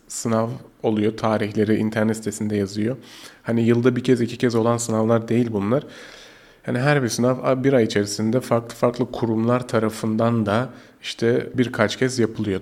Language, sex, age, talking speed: Turkish, male, 30-49, 150 wpm